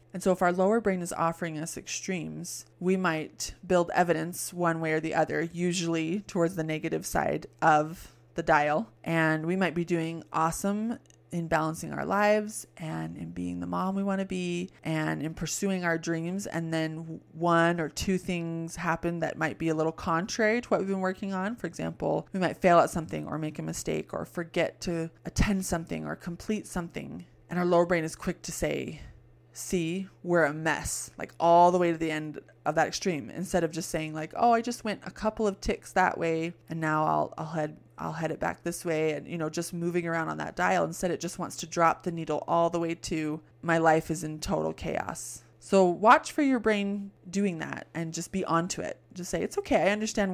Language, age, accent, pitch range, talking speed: English, 20-39, American, 160-185 Hz, 215 wpm